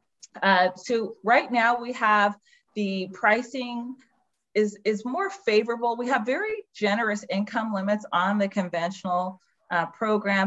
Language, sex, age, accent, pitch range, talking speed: English, female, 30-49, American, 185-235 Hz, 130 wpm